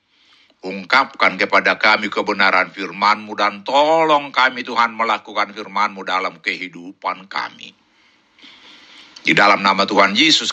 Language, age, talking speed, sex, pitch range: Indonesian, 60-79, 110 wpm, male, 105-150 Hz